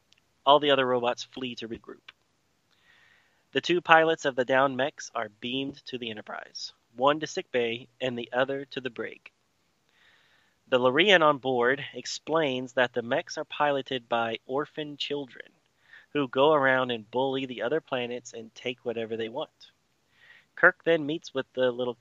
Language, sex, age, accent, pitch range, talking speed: English, male, 30-49, American, 120-135 Hz, 165 wpm